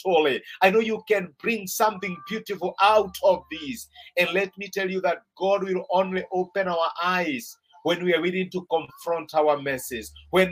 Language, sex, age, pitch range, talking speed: English, male, 50-69, 165-210 Hz, 185 wpm